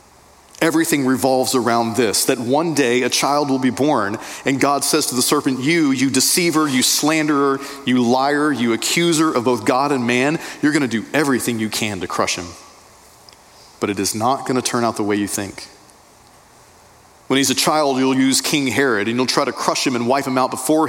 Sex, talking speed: male, 210 wpm